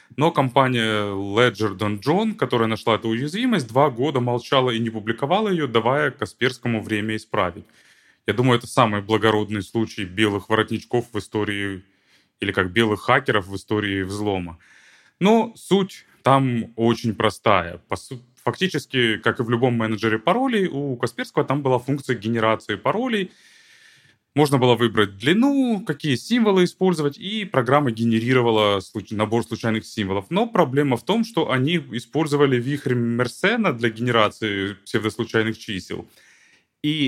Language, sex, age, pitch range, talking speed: Ukrainian, male, 20-39, 110-145 Hz, 135 wpm